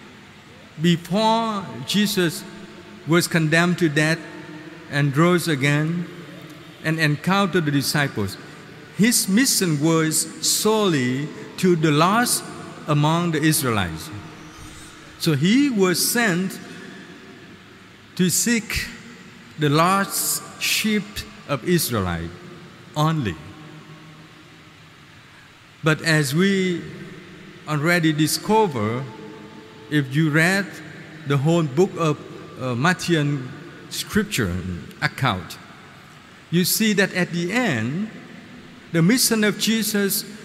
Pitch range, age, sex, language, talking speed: 155-190 Hz, 50-69, male, Vietnamese, 90 wpm